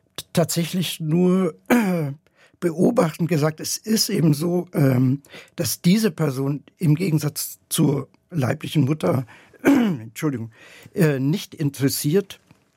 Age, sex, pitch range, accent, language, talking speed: 60-79, male, 130-165 Hz, German, German, 90 wpm